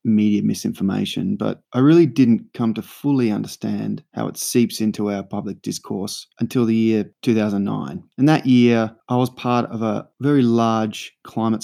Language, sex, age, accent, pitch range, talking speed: English, male, 20-39, Australian, 110-125 Hz, 165 wpm